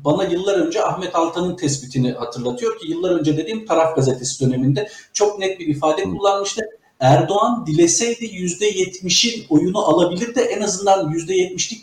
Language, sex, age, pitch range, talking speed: Turkish, male, 50-69, 150-215 Hz, 145 wpm